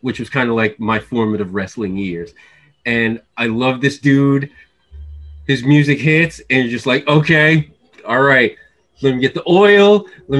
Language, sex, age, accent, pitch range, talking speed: English, male, 20-39, American, 135-160 Hz, 175 wpm